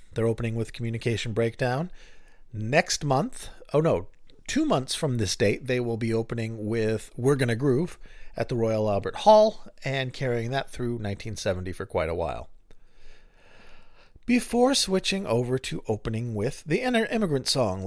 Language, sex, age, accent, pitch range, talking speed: English, male, 40-59, American, 110-150 Hz, 155 wpm